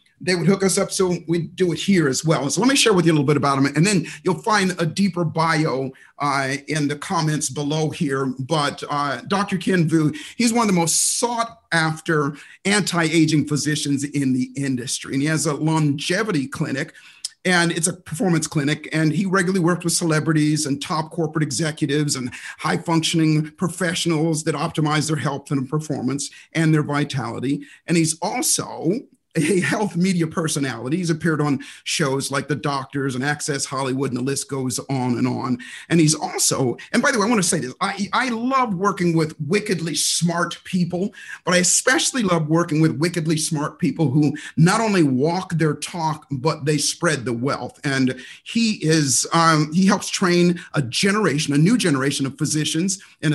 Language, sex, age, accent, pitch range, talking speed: English, male, 50-69, American, 145-175 Hz, 180 wpm